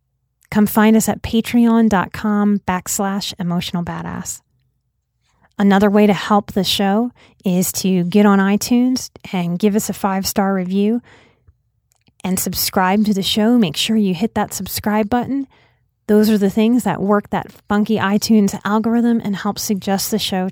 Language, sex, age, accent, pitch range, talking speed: English, female, 30-49, American, 185-220 Hz, 150 wpm